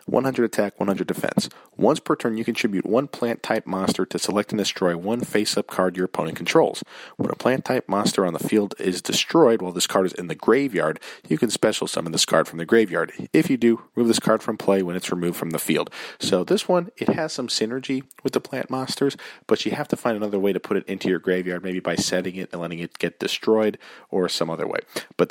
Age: 40-59